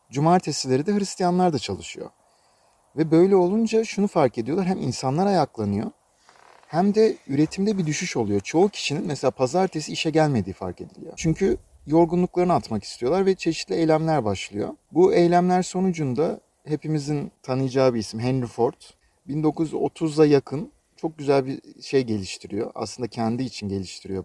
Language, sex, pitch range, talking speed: Turkish, male, 120-170 Hz, 140 wpm